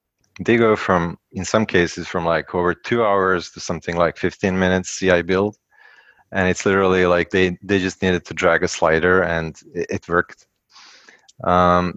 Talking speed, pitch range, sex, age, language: 170 wpm, 85-100 Hz, male, 20-39, English